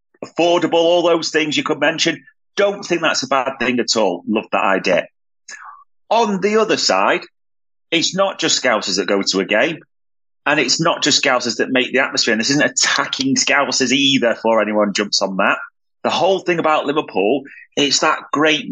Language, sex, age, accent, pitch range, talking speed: English, male, 30-49, British, 120-165 Hz, 190 wpm